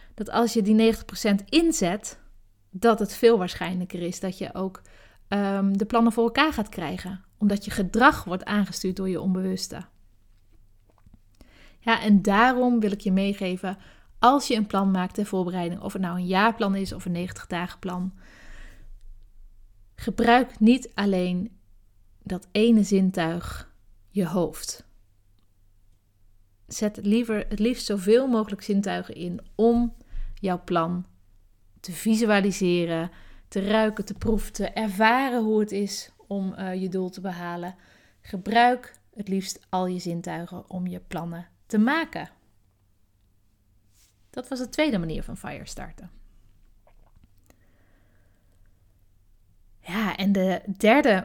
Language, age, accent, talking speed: Dutch, 30-49, Dutch, 135 wpm